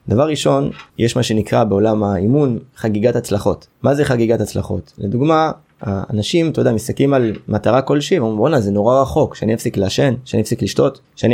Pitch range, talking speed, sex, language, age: 105-140 Hz, 175 wpm, male, Hebrew, 20-39